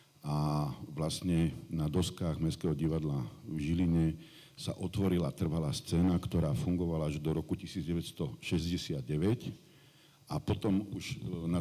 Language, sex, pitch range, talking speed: Slovak, male, 80-100 Hz, 115 wpm